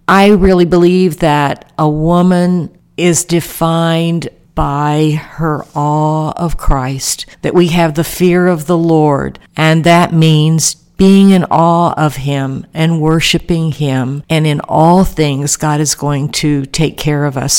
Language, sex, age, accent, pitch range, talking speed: English, female, 60-79, American, 150-180 Hz, 150 wpm